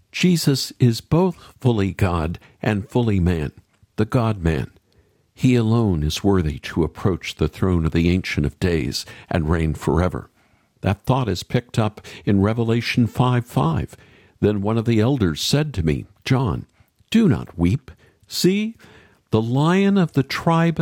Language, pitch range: English, 90-125 Hz